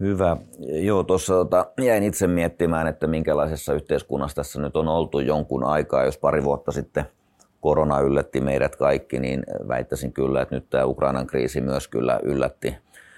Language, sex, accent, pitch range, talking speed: Finnish, male, native, 65-80 Hz, 155 wpm